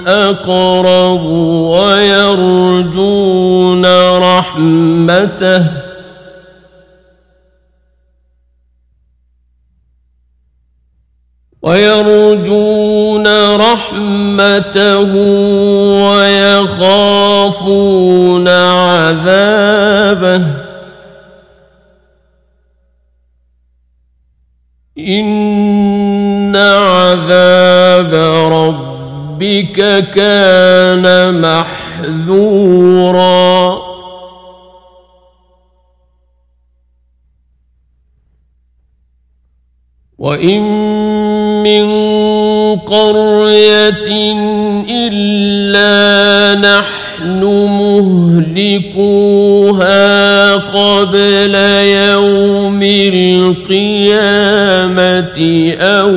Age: 50-69